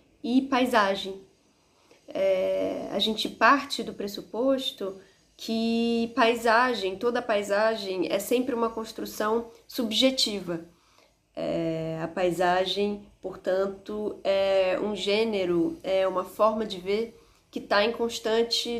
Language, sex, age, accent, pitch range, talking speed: Portuguese, female, 10-29, Brazilian, 190-240 Hz, 105 wpm